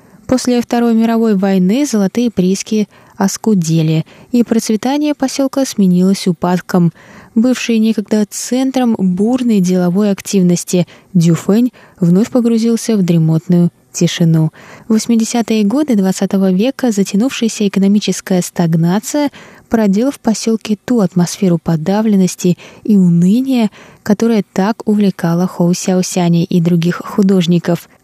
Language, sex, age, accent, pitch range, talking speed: Russian, female, 20-39, native, 175-225 Hz, 100 wpm